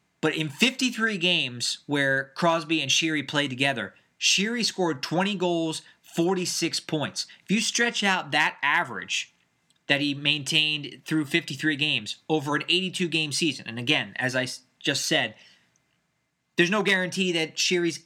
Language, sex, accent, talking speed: English, male, American, 145 wpm